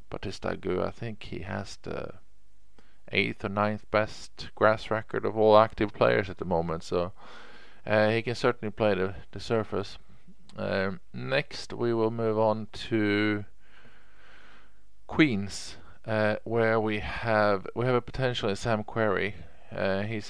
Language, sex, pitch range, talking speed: English, male, 95-110 Hz, 150 wpm